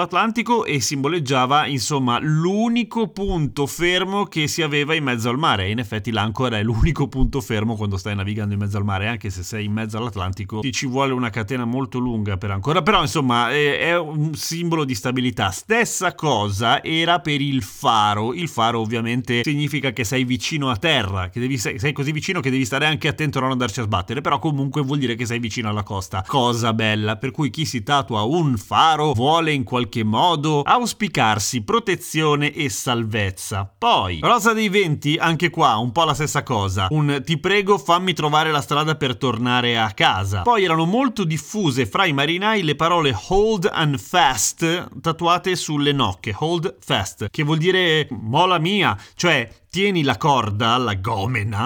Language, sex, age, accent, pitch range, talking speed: Italian, male, 30-49, native, 120-165 Hz, 180 wpm